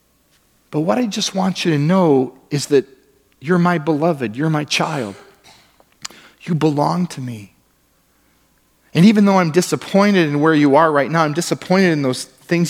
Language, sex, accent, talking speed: English, male, American, 170 wpm